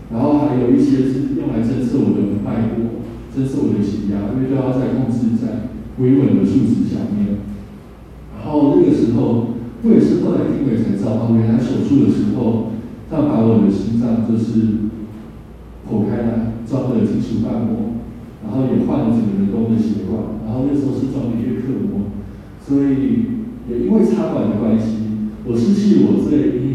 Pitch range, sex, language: 105-125 Hz, male, Chinese